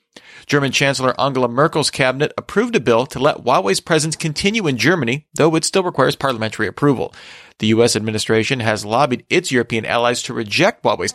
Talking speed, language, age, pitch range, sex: 170 wpm, English, 40-59, 120-155 Hz, male